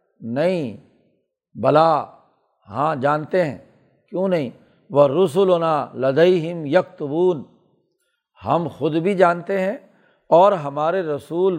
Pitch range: 150-185 Hz